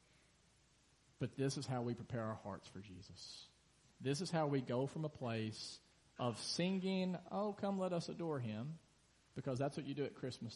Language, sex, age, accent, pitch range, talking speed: English, male, 40-59, American, 120-150 Hz, 190 wpm